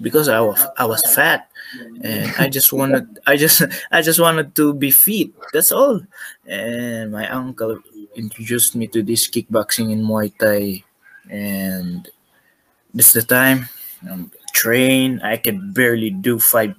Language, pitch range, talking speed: English, 110-140 Hz, 155 wpm